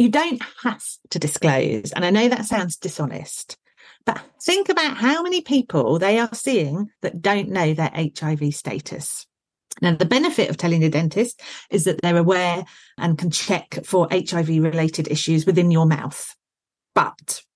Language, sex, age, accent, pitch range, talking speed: English, female, 40-59, British, 155-215 Hz, 165 wpm